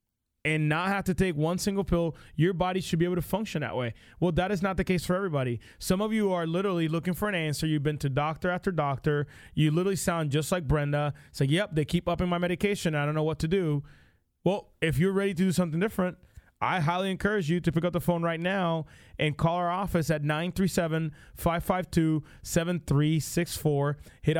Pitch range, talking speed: 150-180 Hz, 210 wpm